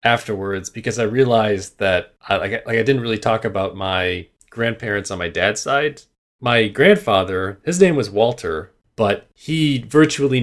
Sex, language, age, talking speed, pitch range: male, English, 30-49, 155 wpm, 95-125 Hz